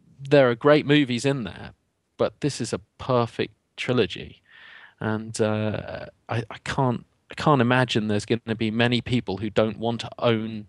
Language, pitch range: English, 105-125 Hz